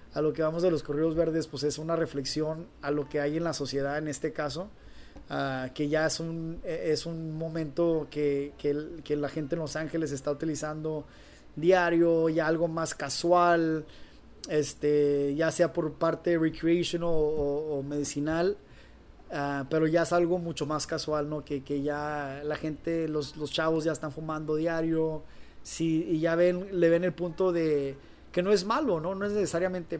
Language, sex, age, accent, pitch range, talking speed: Spanish, male, 30-49, Mexican, 150-170 Hz, 185 wpm